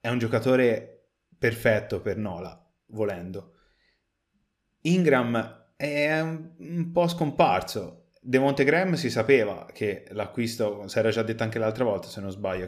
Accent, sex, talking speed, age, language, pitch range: native, male, 135 wpm, 30-49, Italian, 105-130 Hz